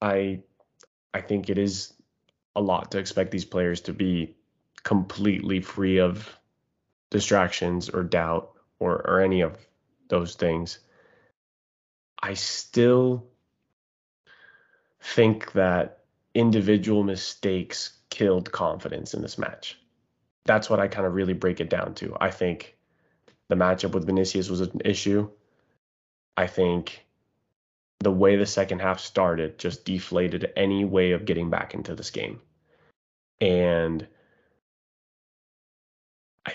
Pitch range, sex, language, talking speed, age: 90-100 Hz, male, English, 125 wpm, 20-39